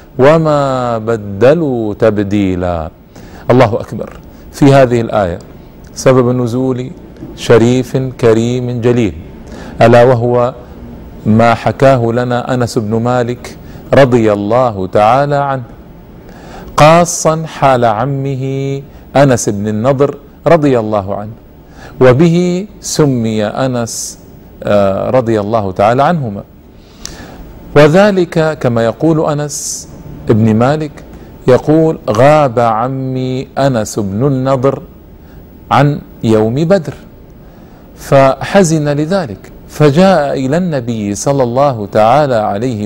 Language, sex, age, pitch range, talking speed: Arabic, male, 40-59, 115-150 Hz, 90 wpm